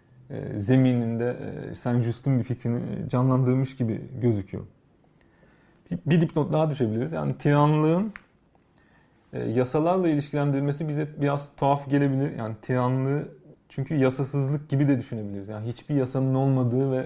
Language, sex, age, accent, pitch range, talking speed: Turkish, male, 30-49, native, 120-145 Hz, 115 wpm